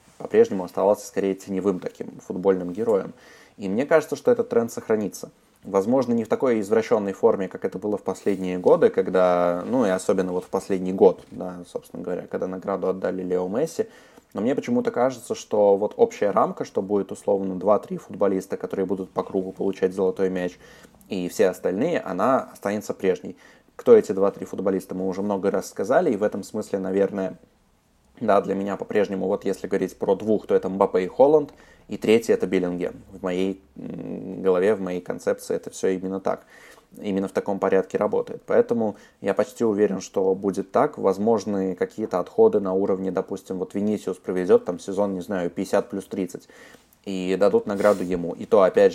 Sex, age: male, 20-39